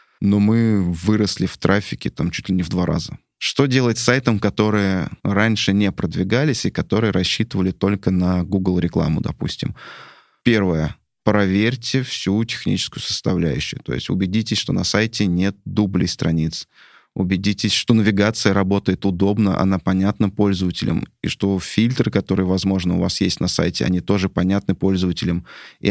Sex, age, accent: male, 20-39, native